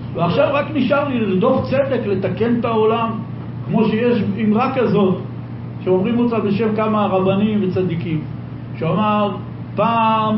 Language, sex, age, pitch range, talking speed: Hebrew, male, 60-79, 185-250 Hz, 120 wpm